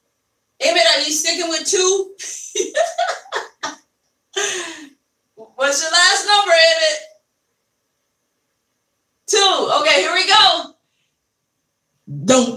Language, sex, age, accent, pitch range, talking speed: English, female, 30-49, American, 230-320 Hz, 80 wpm